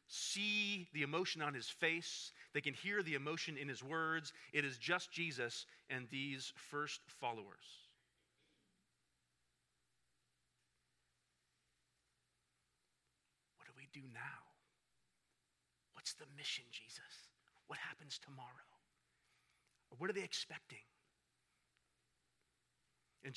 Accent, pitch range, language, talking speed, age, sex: American, 105-150 Hz, English, 100 wpm, 40-59, male